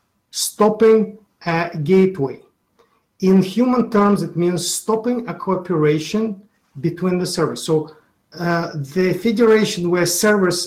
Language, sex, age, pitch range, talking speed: English, male, 50-69, 155-205 Hz, 110 wpm